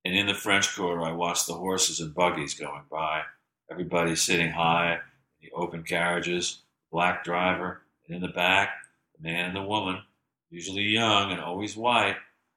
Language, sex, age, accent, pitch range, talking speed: English, male, 50-69, American, 85-110 Hz, 170 wpm